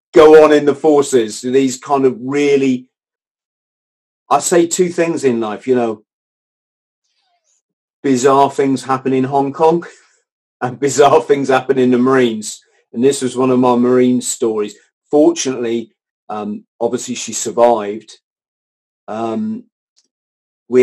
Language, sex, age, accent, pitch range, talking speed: English, male, 40-59, British, 115-140 Hz, 130 wpm